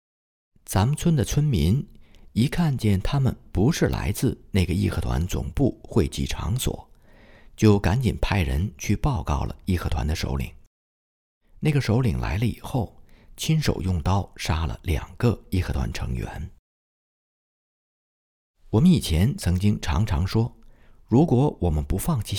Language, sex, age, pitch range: Chinese, male, 50-69, 75-110 Hz